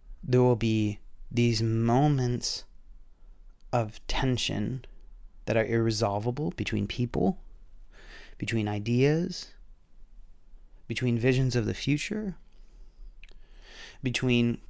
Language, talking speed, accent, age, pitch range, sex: English, 80 wpm, American, 30-49, 110-130 Hz, male